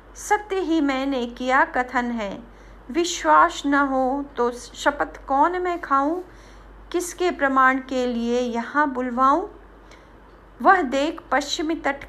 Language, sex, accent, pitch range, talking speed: Hindi, female, native, 240-295 Hz, 120 wpm